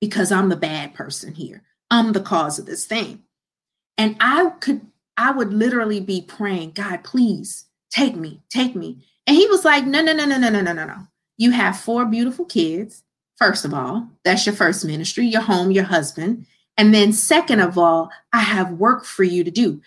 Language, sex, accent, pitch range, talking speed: English, female, American, 195-275 Hz, 200 wpm